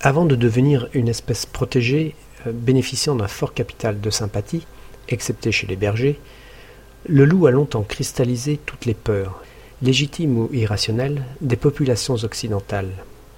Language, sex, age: French, male, 40-59